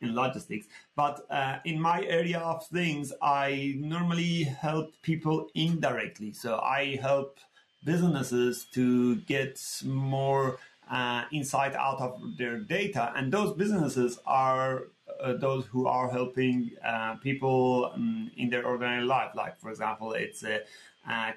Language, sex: English, male